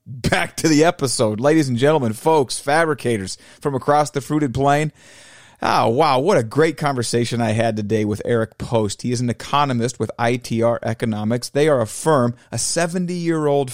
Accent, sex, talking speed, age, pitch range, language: American, male, 165 wpm, 30-49, 110-140 Hz, English